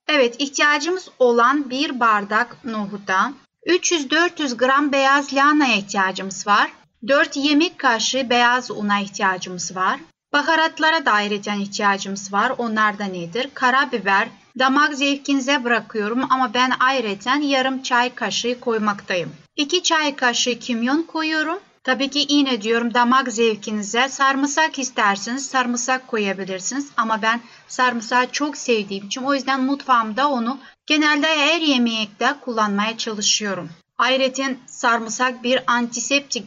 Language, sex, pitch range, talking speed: Turkish, female, 215-275 Hz, 115 wpm